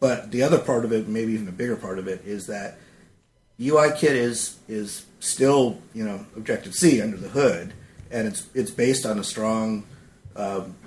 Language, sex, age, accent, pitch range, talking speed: English, male, 50-69, American, 100-125 Hz, 190 wpm